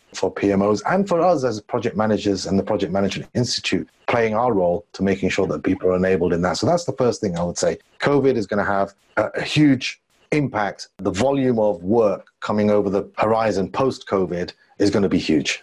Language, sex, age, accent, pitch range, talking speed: English, male, 30-49, British, 95-120 Hz, 205 wpm